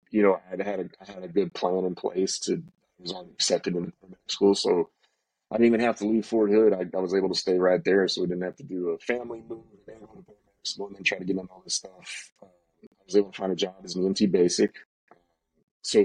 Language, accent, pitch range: English, American, 90-110 Hz